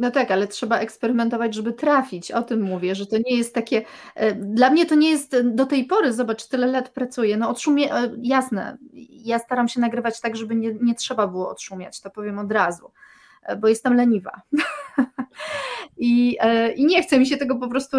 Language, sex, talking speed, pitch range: Polish, female, 190 wpm, 220-270 Hz